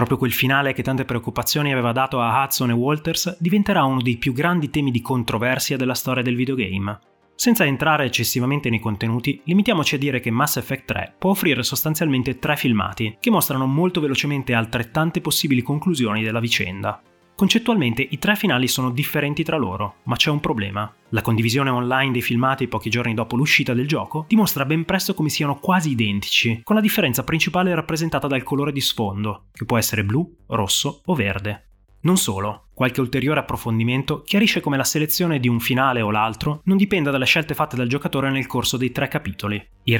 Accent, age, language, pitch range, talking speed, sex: native, 20-39, Italian, 115-150 Hz, 185 wpm, male